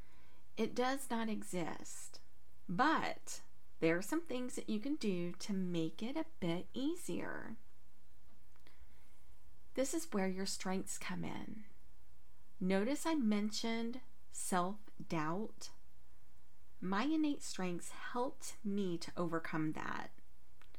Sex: female